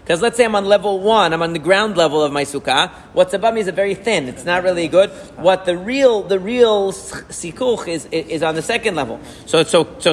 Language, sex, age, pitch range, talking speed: English, male, 40-59, 155-200 Hz, 250 wpm